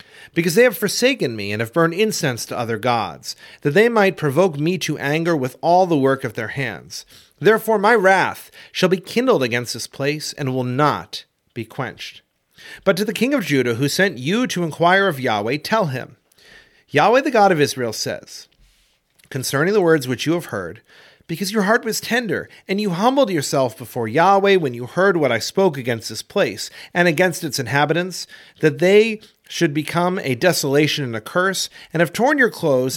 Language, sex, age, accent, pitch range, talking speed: English, male, 40-59, American, 130-195 Hz, 195 wpm